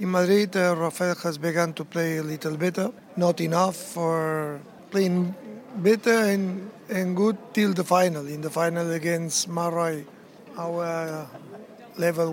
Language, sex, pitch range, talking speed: English, male, 165-200 Hz, 135 wpm